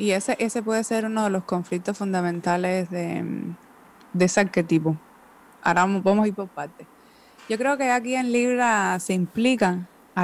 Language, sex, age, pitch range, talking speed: Spanish, female, 20-39, 175-225 Hz, 170 wpm